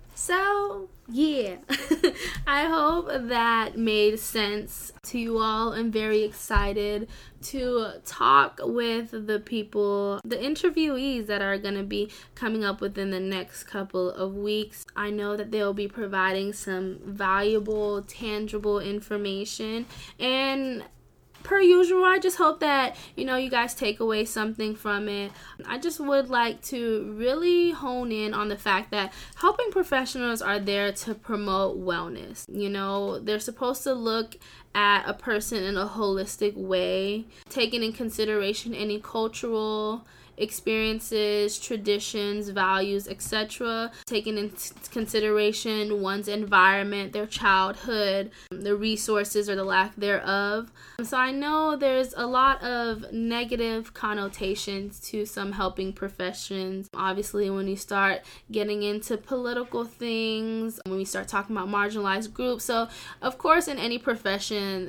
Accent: American